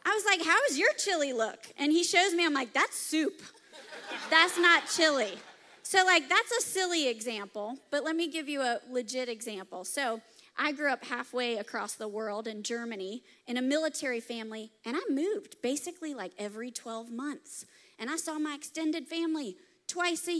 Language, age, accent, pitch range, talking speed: English, 30-49, American, 250-355 Hz, 185 wpm